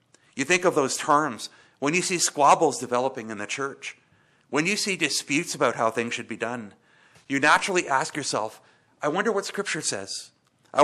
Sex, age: male, 50-69